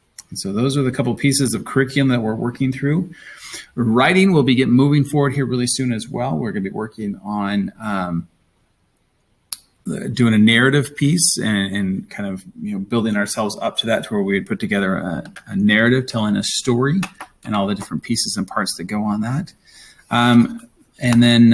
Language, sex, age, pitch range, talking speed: English, male, 30-49, 110-140 Hz, 200 wpm